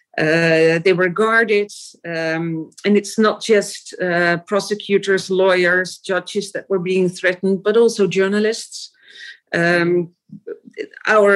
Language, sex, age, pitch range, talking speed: English, female, 40-59, 175-210 Hz, 115 wpm